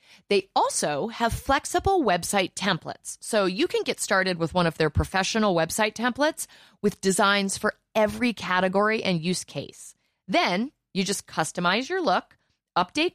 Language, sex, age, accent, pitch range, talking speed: English, female, 30-49, American, 160-230 Hz, 150 wpm